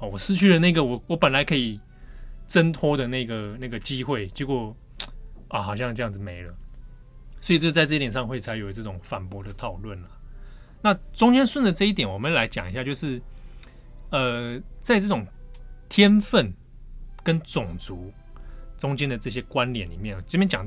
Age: 20-39